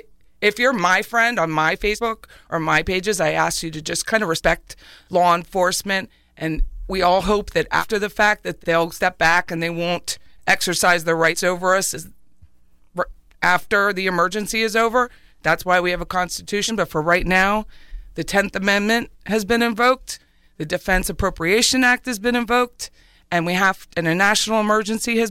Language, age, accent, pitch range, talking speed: English, 40-59, American, 170-220 Hz, 180 wpm